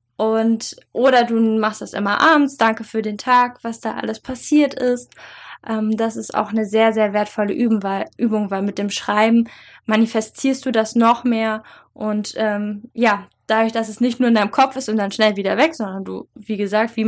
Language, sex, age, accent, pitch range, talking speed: German, female, 10-29, German, 215-245 Hz, 195 wpm